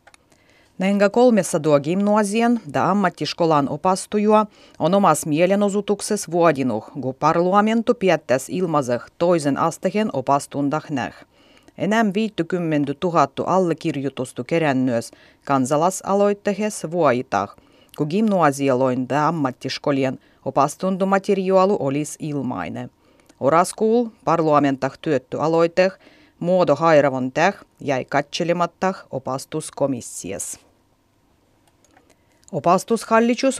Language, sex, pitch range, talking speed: Finnish, female, 140-190 Hz, 75 wpm